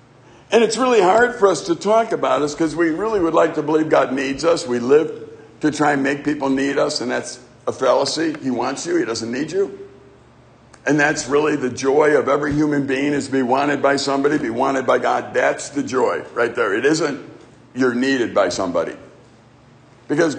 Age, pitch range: 60-79, 130-175 Hz